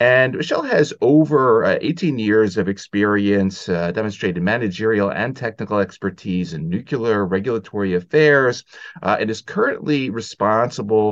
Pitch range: 95-120 Hz